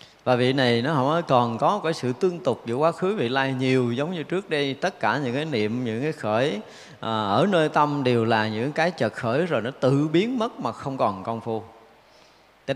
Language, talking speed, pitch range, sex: Vietnamese, 235 wpm, 110-155 Hz, male